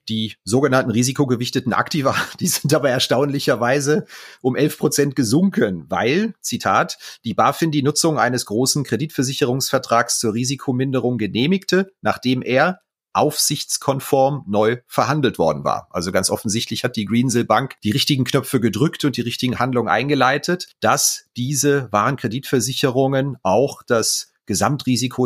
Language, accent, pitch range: German, German, 115-145 Hz